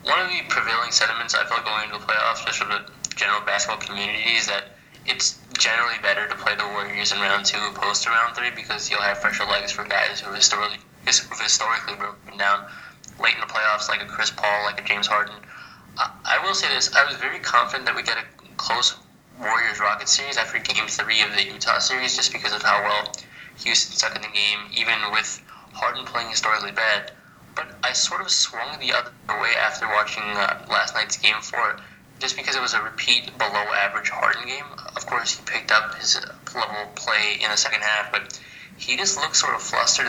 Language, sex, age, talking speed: English, male, 20-39, 210 wpm